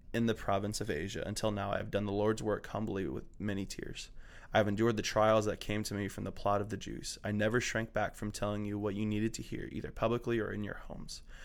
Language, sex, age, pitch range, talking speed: English, male, 20-39, 100-115 Hz, 260 wpm